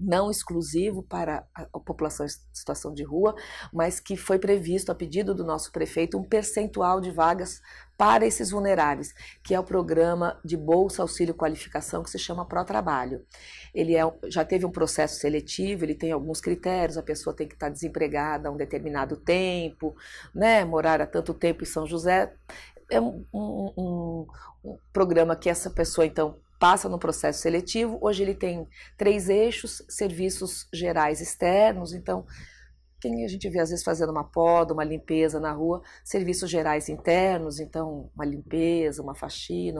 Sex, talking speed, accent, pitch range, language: female, 165 wpm, Brazilian, 155-190 Hz, Portuguese